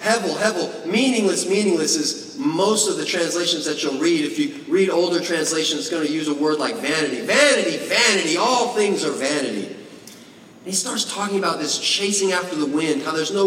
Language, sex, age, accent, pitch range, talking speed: English, male, 30-49, American, 165-260 Hz, 195 wpm